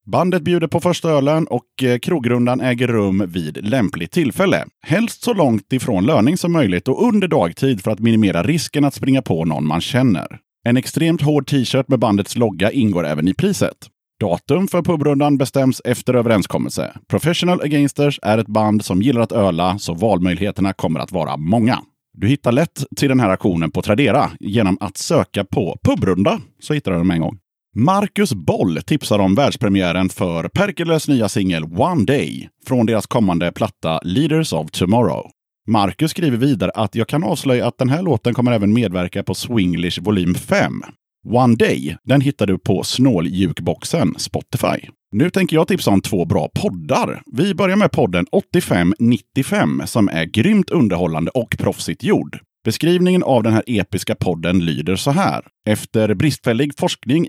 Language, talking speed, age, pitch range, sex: Swedish, 170 wpm, 30-49, 100-145 Hz, male